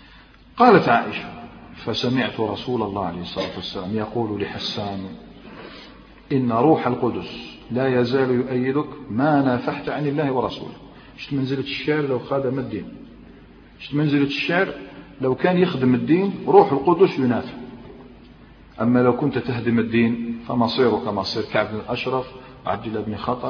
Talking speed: 130 wpm